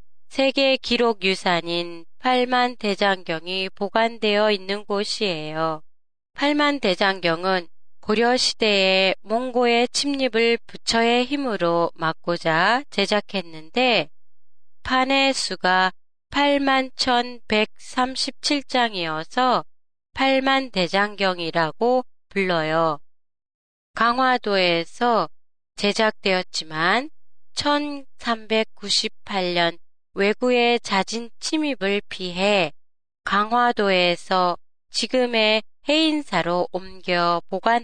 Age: 20-39